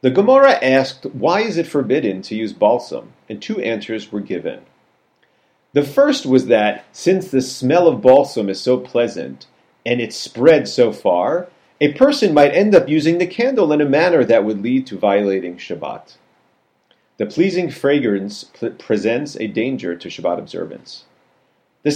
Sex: male